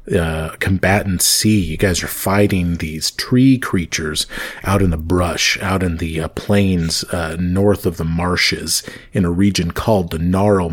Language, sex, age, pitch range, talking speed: English, male, 40-59, 85-100 Hz, 170 wpm